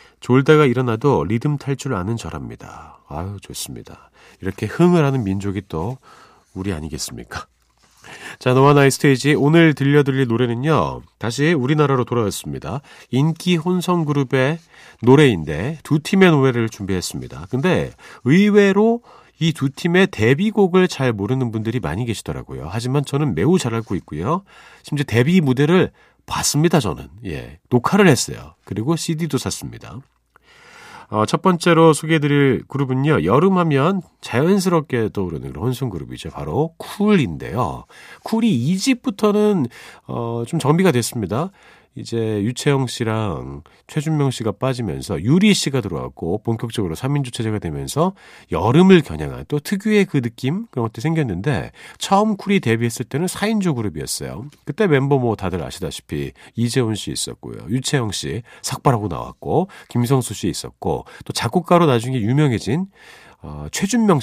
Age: 40-59